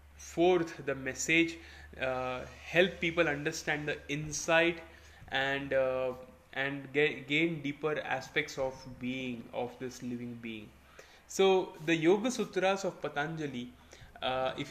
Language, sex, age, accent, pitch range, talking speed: Marathi, male, 10-29, native, 130-165 Hz, 120 wpm